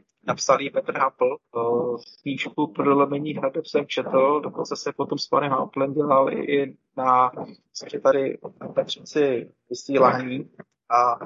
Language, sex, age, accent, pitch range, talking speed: Czech, male, 20-39, native, 130-150 Hz, 105 wpm